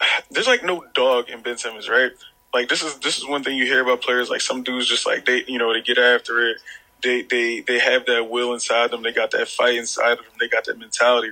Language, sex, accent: English, male, American